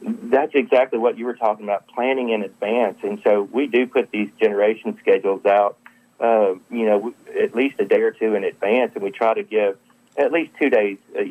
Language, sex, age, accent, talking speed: English, male, 40-59, American, 210 wpm